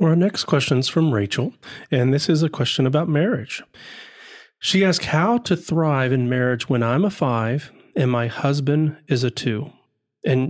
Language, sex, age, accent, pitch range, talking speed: English, male, 40-59, American, 120-155 Hz, 175 wpm